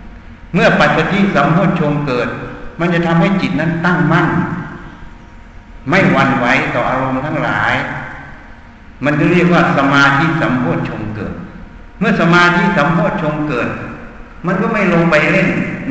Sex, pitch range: male, 130-170 Hz